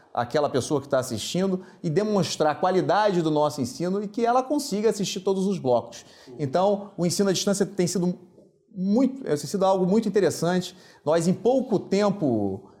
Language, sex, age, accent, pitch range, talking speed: Portuguese, male, 30-49, Brazilian, 140-185 Hz, 165 wpm